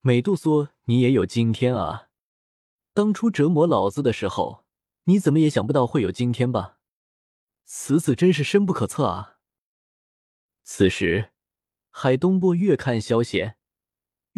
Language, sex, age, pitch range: Chinese, male, 20-39, 110-160 Hz